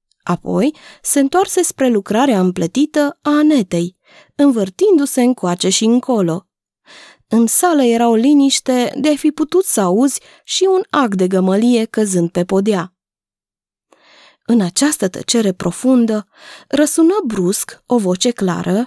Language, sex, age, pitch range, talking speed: Romanian, female, 20-39, 190-285 Hz, 130 wpm